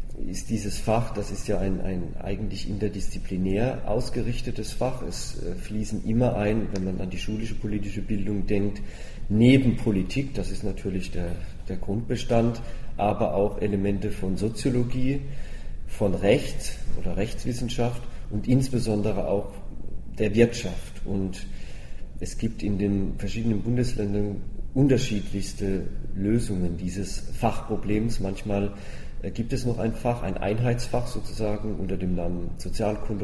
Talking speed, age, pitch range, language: 125 wpm, 40-59, 95-110 Hz, German